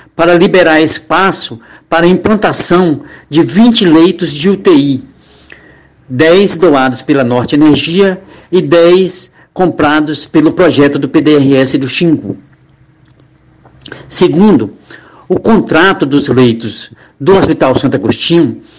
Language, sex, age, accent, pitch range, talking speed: Portuguese, male, 60-79, Brazilian, 145-185 Hz, 110 wpm